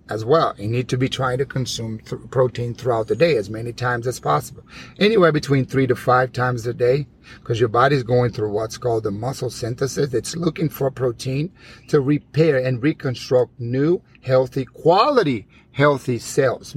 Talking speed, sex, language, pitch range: 180 wpm, male, English, 120-140 Hz